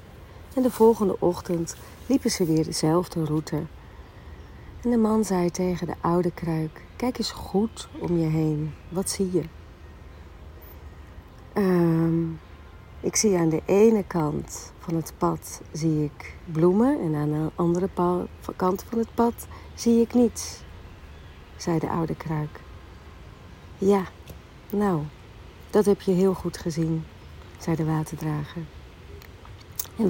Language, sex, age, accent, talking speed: Dutch, female, 40-59, Dutch, 125 wpm